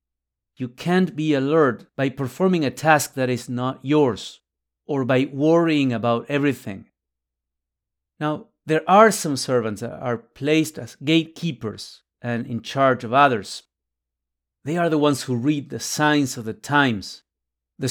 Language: English